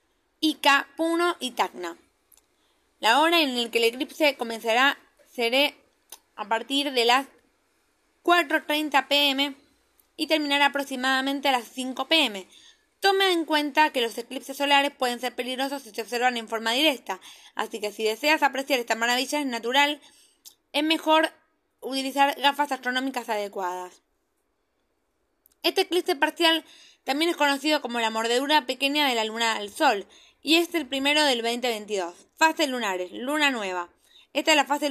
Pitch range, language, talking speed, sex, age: 235-310 Hz, Spanish, 150 wpm, female, 20-39